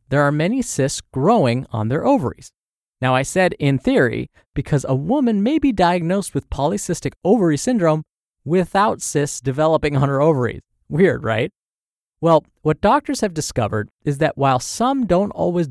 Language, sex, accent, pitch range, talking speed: English, male, American, 125-175 Hz, 160 wpm